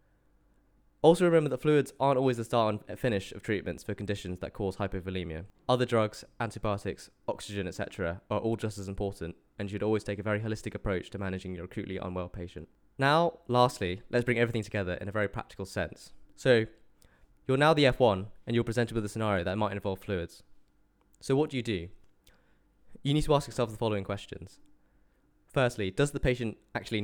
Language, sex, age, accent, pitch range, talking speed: English, male, 20-39, British, 95-125 Hz, 190 wpm